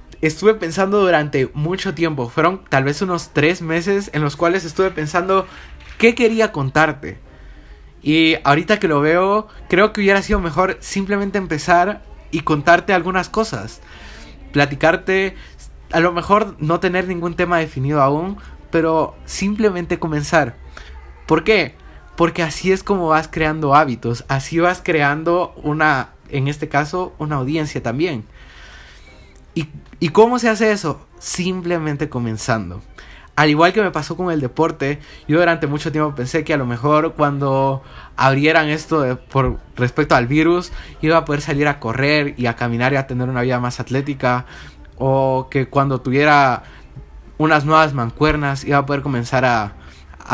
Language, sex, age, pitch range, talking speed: Spanish, male, 20-39, 130-175 Hz, 155 wpm